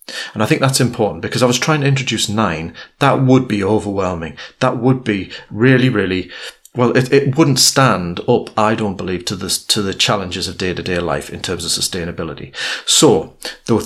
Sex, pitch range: male, 95-120 Hz